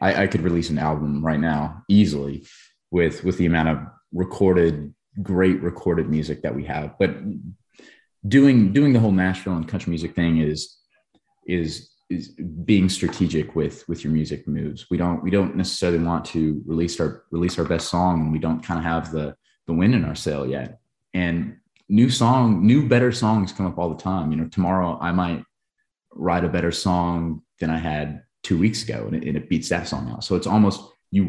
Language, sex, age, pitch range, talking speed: English, male, 20-39, 80-100 Hz, 195 wpm